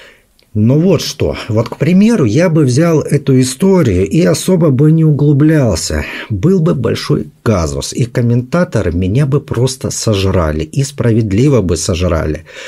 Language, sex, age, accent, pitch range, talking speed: Russian, male, 50-69, native, 90-135 Hz, 140 wpm